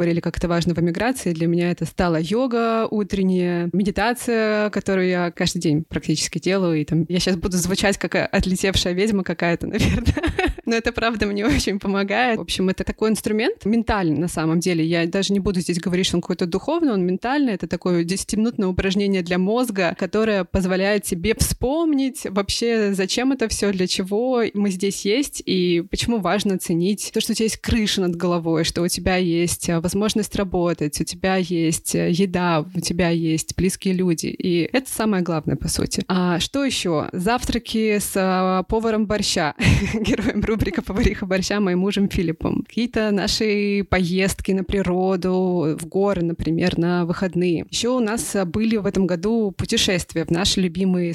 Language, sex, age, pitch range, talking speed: Russian, female, 20-39, 175-215 Hz, 170 wpm